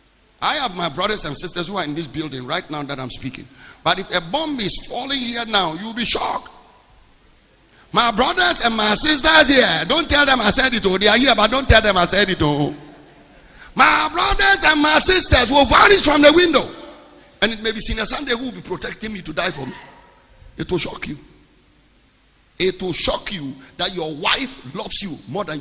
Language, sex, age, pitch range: English, male, 50-69, 170-265 Hz